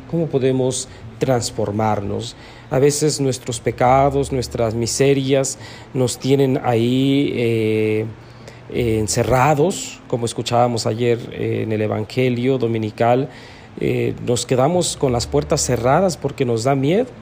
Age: 40-59